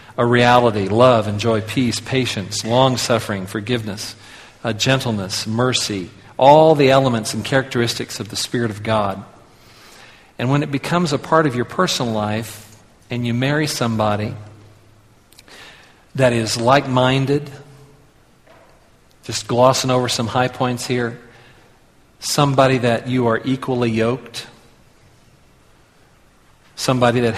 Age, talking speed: 50-69, 115 wpm